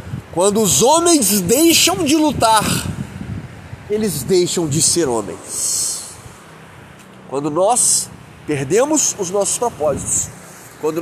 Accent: Brazilian